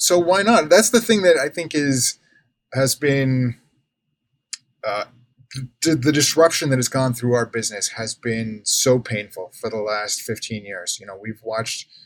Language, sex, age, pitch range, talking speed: English, male, 20-39, 120-145 Hz, 175 wpm